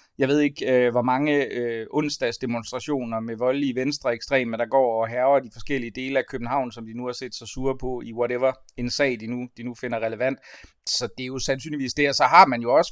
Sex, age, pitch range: male, 30-49, 120-140 Hz